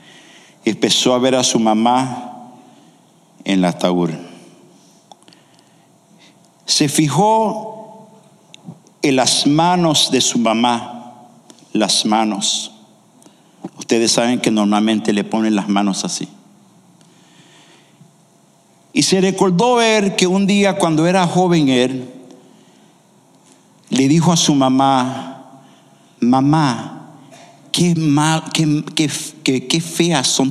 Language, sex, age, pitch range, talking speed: English, male, 50-69, 125-170 Hz, 100 wpm